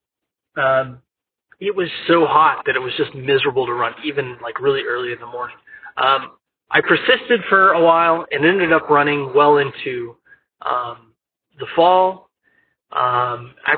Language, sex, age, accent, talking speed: English, male, 30-49, American, 155 wpm